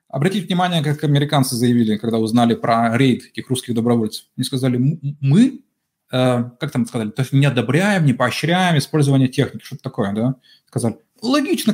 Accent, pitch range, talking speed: native, 125-175 Hz, 160 wpm